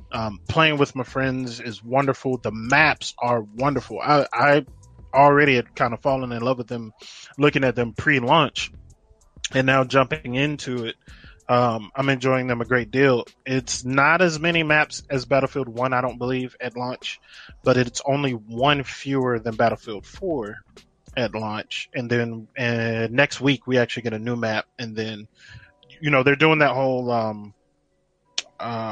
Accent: American